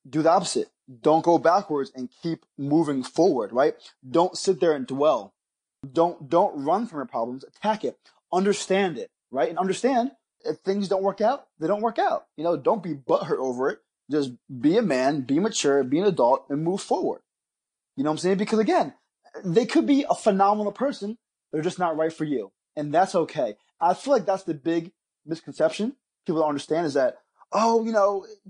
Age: 20-39